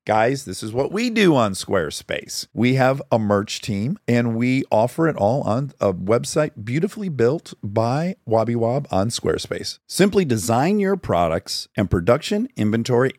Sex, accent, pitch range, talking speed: male, American, 95-130 Hz, 155 wpm